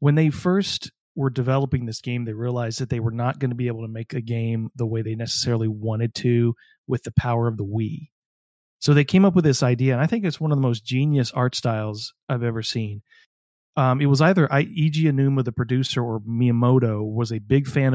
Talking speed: 225 wpm